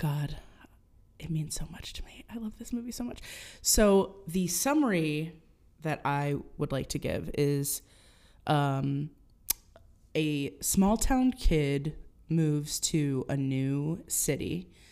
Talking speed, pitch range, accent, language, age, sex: 135 wpm, 140-160 Hz, American, English, 20-39, female